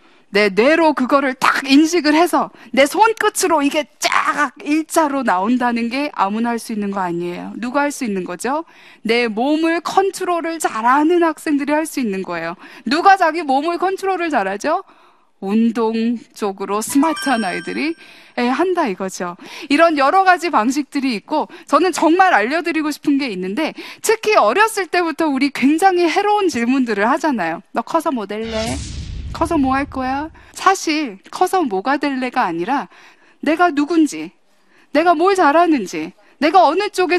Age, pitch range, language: 20-39, 245-345 Hz, Korean